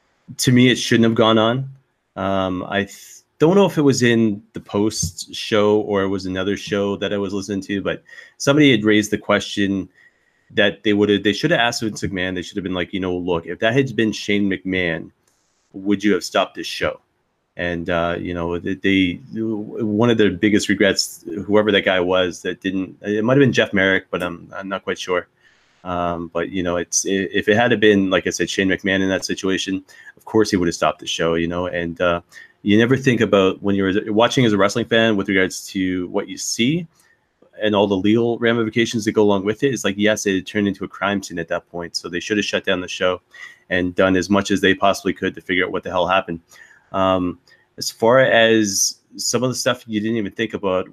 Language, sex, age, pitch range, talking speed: English, male, 30-49, 95-110 Hz, 235 wpm